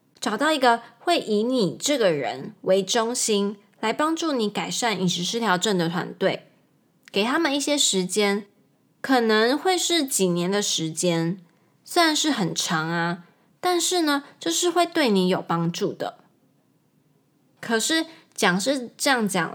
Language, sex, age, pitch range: Chinese, female, 20-39, 185-275 Hz